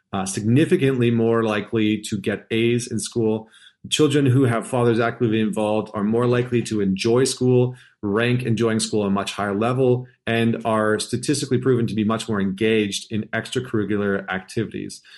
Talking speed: 160 wpm